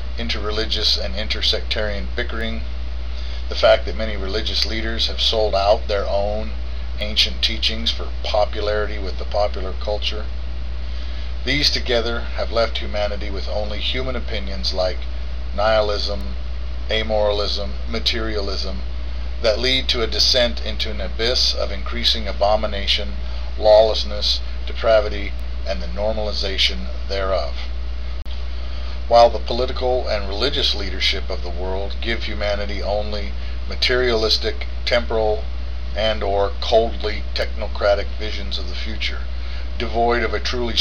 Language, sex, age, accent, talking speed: English, male, 50-69, American, 115 wpm